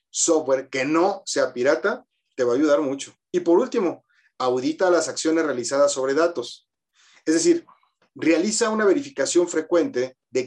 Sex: male